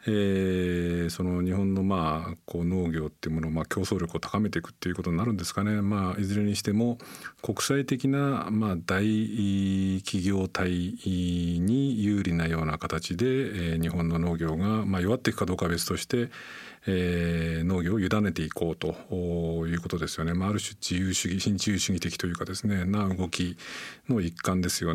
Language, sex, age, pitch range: Japanese, male, 50-69, 85-110 Hz